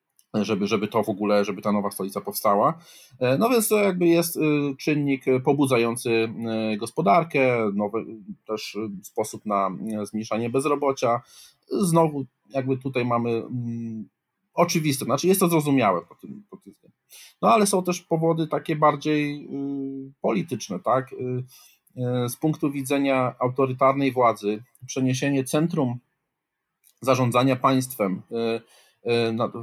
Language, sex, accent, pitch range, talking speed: Polish, male, native, 110-135 Hz, 110 wpm